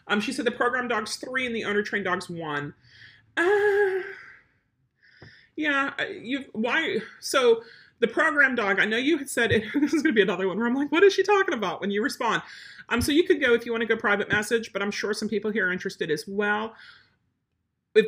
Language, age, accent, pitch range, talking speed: English, 40-59, American, 185-230 Hz, 220 wpm